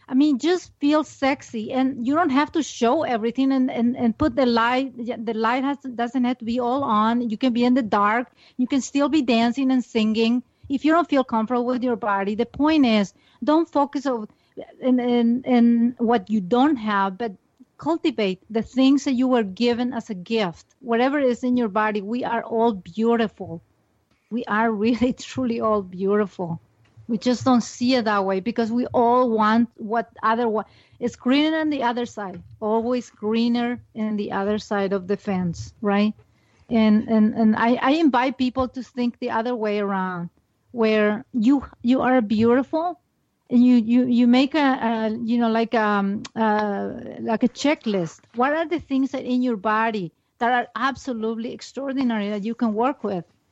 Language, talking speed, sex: English, 185 wpm, female